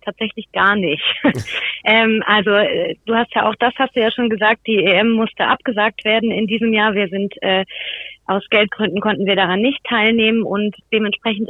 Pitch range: 190-220 Hz